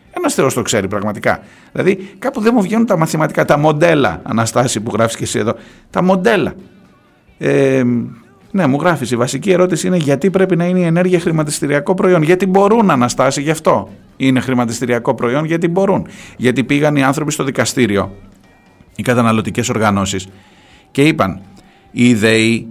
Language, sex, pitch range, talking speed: Greek, male, 110-175 Hz, 160 wpm